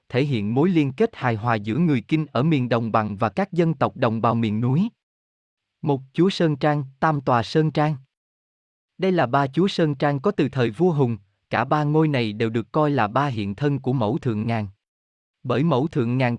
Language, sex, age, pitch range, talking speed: Vietnamese, male, 20-39, 115-155 Hz, 220 wpm